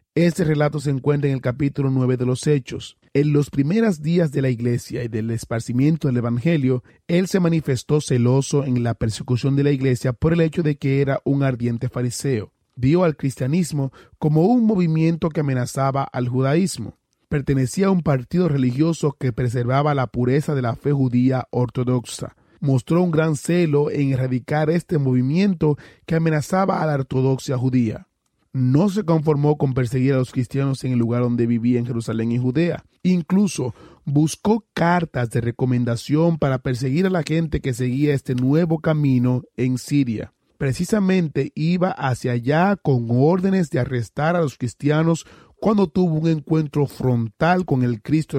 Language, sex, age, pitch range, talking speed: Spanish, male, 30-49, 125-160 Hz, 165 wpm